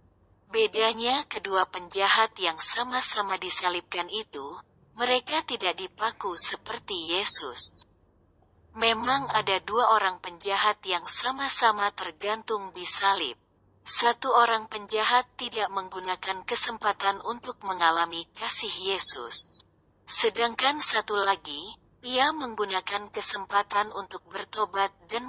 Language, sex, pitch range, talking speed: Indonesian, female, 185-230 Hz, 95 wpm